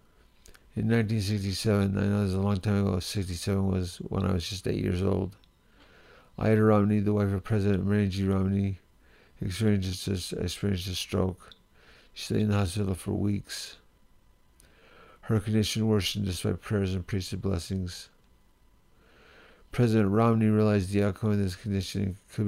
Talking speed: 150 wpm